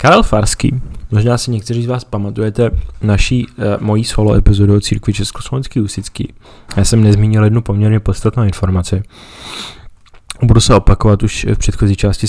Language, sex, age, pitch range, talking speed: Czech, male, 20-39, 100-110 Hz, 150 wpm